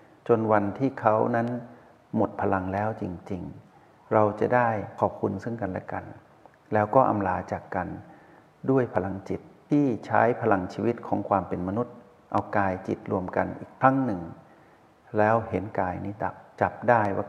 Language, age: Thai, 60-79